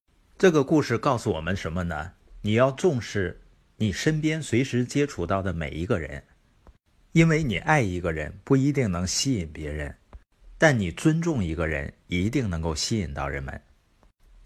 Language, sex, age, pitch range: Chinese, male, 50-69, 85-130 Hz